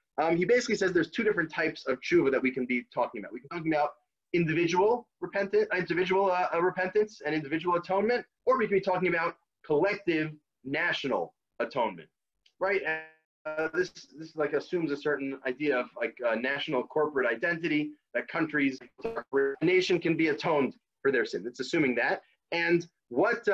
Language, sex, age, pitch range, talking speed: English, male, 30-49, 150-190 Hz, 175 wpm